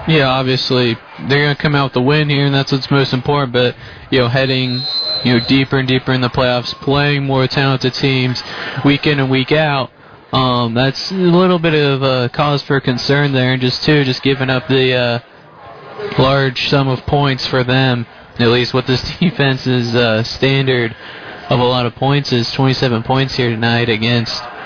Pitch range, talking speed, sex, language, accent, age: 125-140 Hz, 190 wpm, male, English, American, 20-39